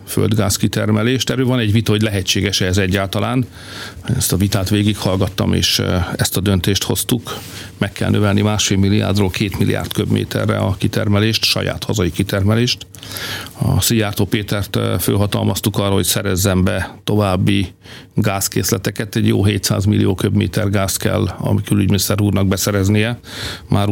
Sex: male